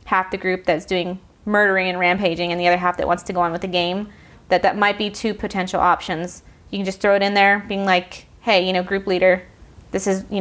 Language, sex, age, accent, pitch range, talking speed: English, female, 20-39, American, 180-210 Hz, 255 wpm